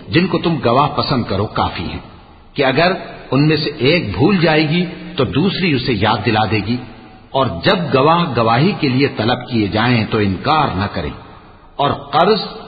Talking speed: 185 wpm